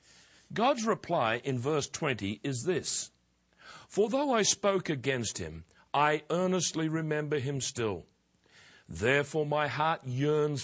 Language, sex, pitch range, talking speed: English, male, 115-175 Hz, 125 wpm